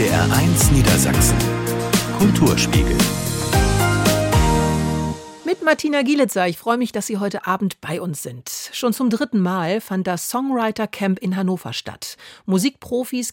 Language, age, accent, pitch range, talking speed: German, 50-69, German, 170-230 Hz, 125 wpm